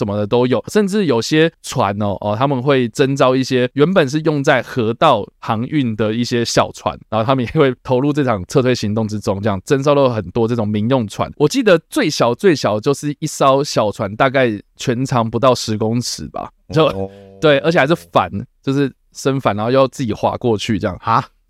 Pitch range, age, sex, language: 110-145 Hz, 20-39, male, Chinese